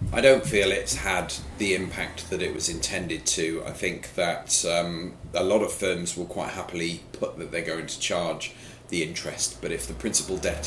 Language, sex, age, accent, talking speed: English, male, 30-49, British, 200 wpm